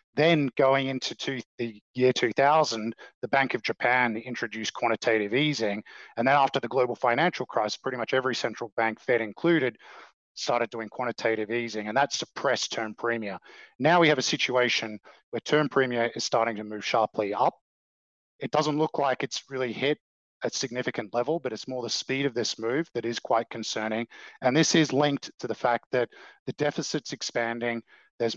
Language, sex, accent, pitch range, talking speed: English, male, Australian, 115-140 Hz, 180 wpm